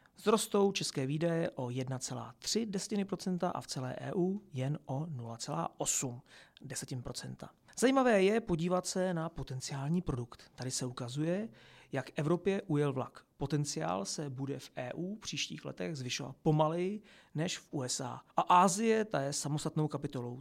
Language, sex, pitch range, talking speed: Czech, male, 130-180 Hz, 130 wpm